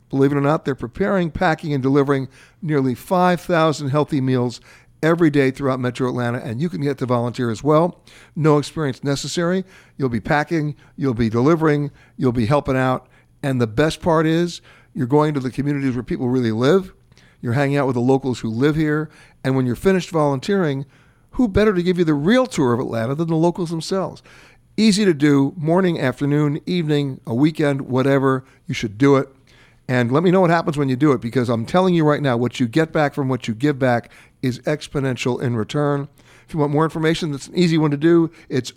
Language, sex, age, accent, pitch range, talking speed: English, male, 60-79, American, 125-160 Hz, 210 wpm